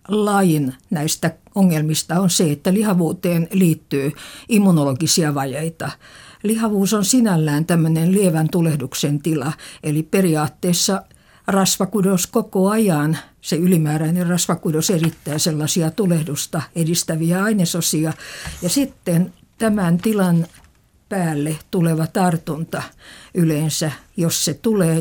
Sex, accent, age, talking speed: female, native, 60-79, 100 wpm